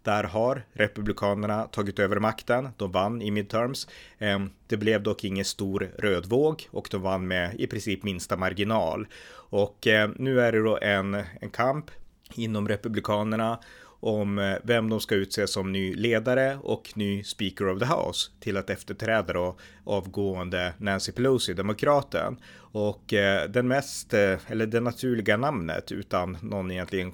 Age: 30-49